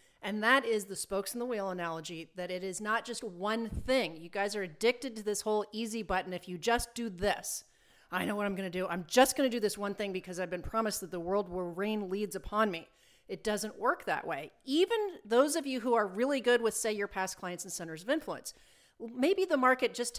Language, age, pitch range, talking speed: English, 40-59, 190-250 Hz, 245 wpm